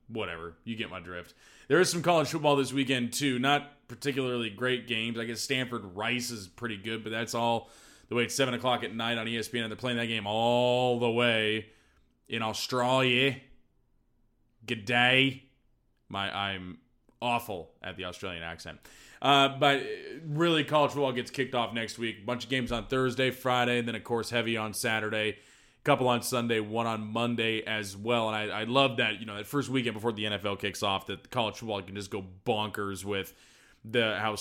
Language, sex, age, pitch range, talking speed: English, male, 20-39, 110-135 Hz, 190 wpm